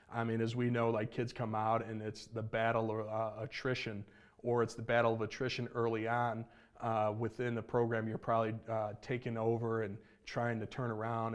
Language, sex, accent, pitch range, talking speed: English, male, American, 110-120 Hz, 200 wpm